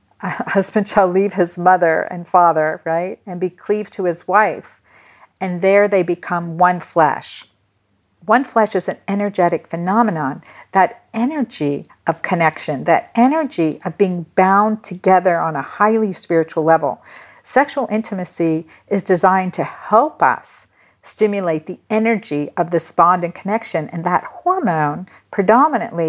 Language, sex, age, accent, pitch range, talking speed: English, female, 50-69, American, 165-215 Hz, 140 wpm